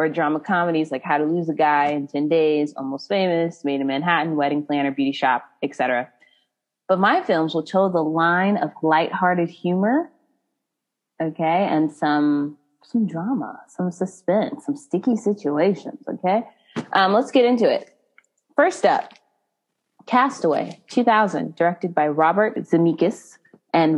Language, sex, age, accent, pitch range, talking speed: English, female, 20-39, American, 150-200 Hz, 145 wpm